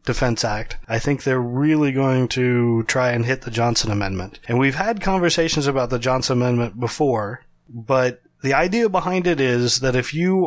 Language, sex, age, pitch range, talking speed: English, male, 30-49, 120-155 Hz, 185 wpm